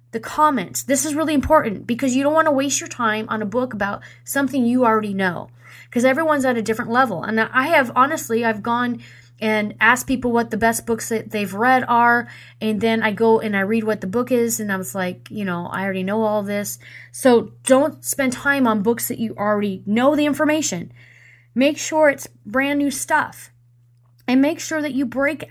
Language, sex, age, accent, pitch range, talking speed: English, female, 30-49, American, 190-255 Hz, 215 wpm